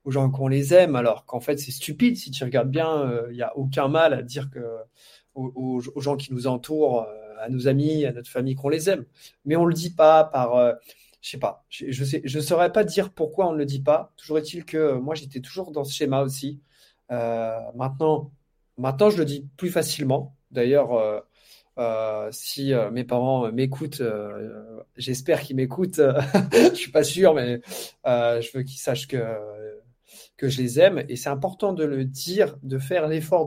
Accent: French